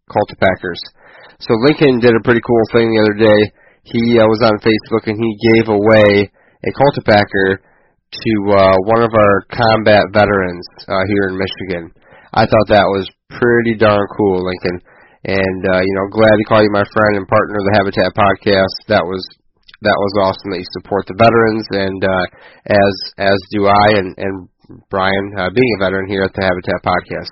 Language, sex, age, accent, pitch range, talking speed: English, male, 20-39, American, 95-115 Hz, 185 wpm